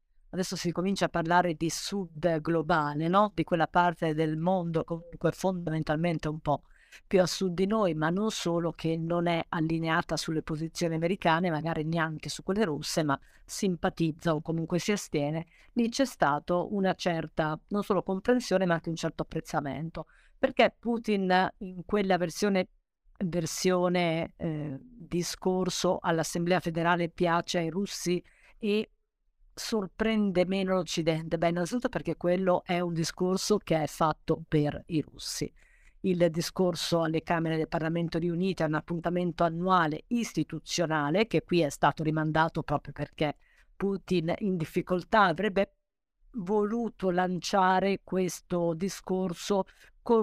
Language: Italian